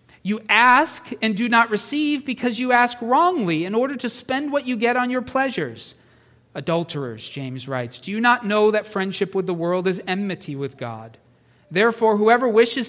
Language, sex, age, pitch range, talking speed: English, male, 40-59, 155-230 Hz, 180 wpm